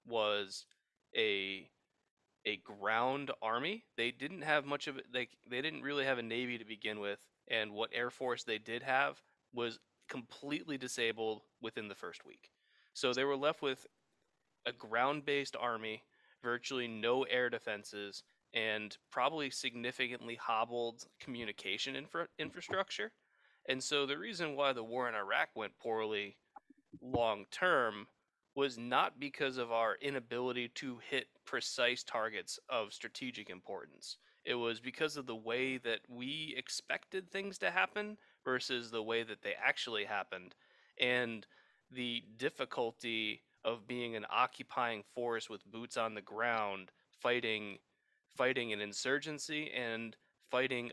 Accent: American